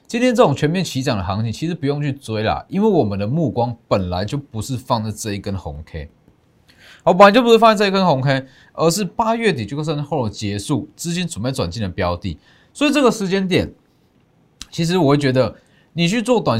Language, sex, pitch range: Chinese, male, 110-170 Hz